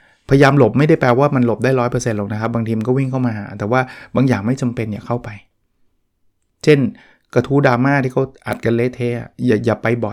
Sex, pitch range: male, 115-140 Hz